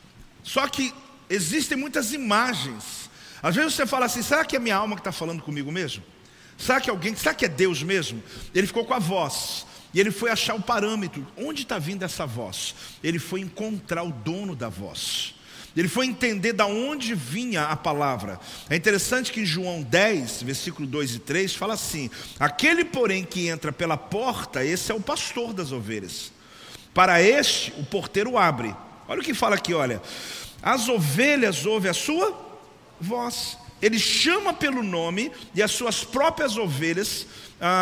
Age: 50-69